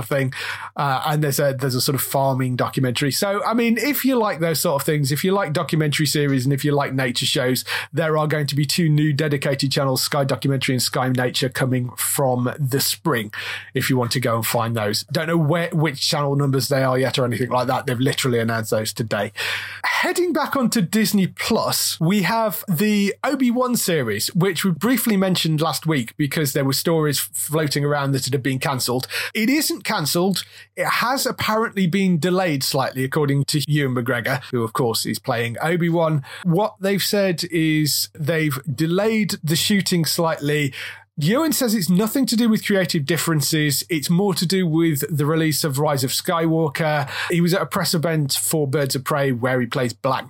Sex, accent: male, British